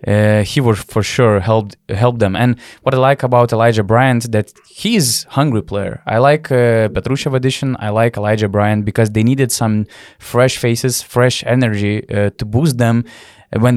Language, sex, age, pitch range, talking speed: English, male, 20-39, 100-120 Hz, 180 wpm